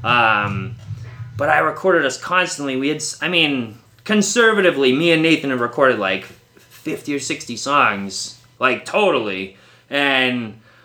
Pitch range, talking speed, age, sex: 125-170 Hz, 135 wpm, 20-39, male